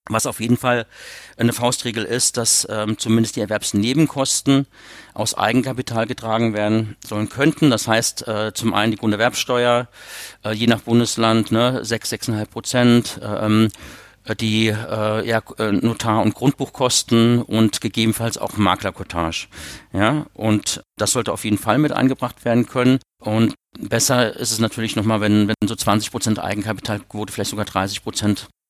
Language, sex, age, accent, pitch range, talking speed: German, male, 50-69, German, 110-125 Hz, 150 wpm